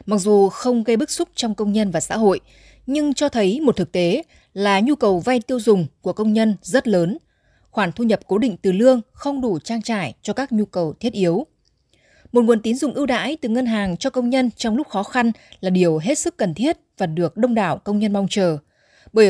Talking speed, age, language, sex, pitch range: 240 wpm, 20-39, Vietnamese, female, 190-250 Hz